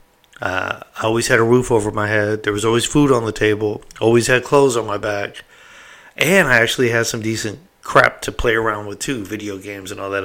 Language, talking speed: English, 230 wpm